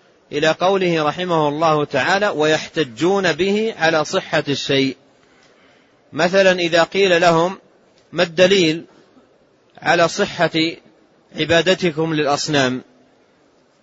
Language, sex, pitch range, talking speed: Arabic, male, 160-195 Hz, 85 wpm